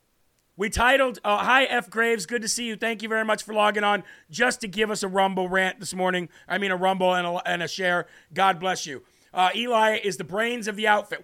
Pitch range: 180-220 Hz